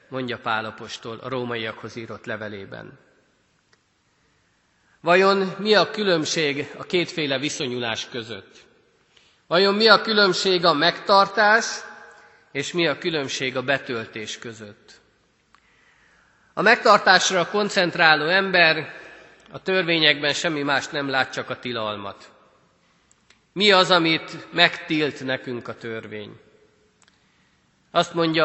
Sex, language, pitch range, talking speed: male, Hungarian, 125-180 Hz, 105 wpm